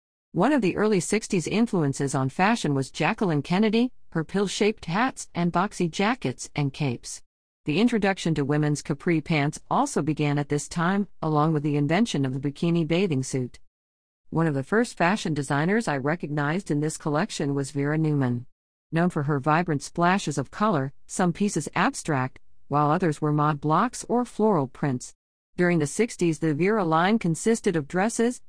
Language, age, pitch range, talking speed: English, 50-69, 145-190 Hz, 170 wpm